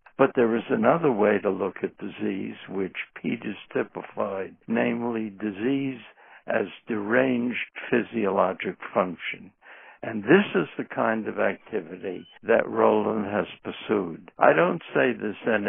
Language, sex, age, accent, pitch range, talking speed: English, male, 60-79, American, 100-120 Hz, 125 wpm